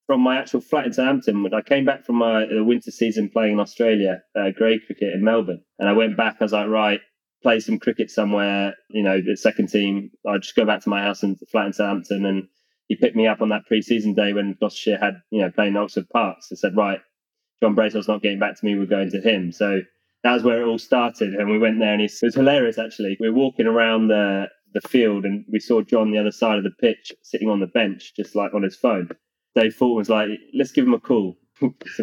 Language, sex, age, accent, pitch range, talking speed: English, male, 20-39, British, 105-125 Hz, 250 wpm